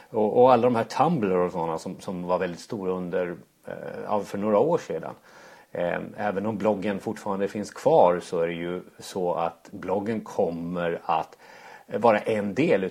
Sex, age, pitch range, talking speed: male, 30-49, 90-115 Hz, 155 wpm